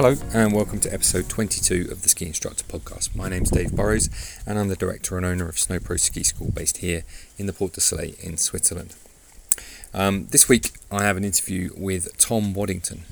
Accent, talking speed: British, 205 wpm